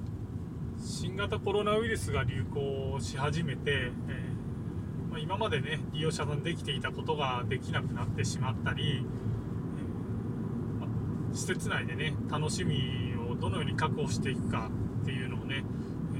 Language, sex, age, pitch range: Japanese, male, 20-39, 115-140 Hz